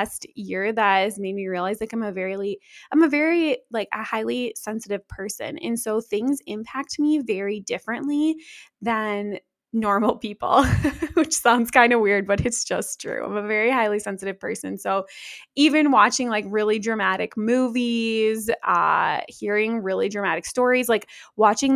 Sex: female